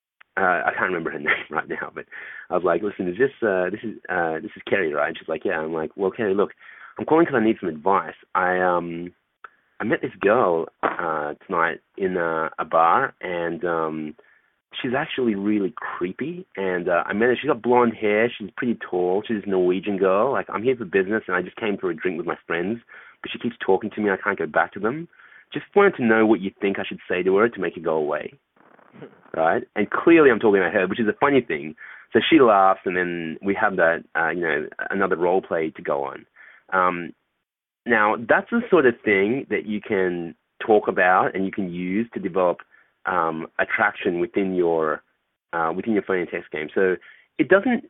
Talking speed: 225 wpm